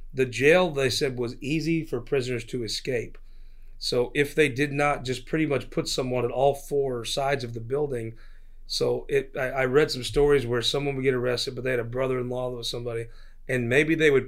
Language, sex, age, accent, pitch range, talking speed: English, male, 30-49, American, 120-140 Hz, 210 wpm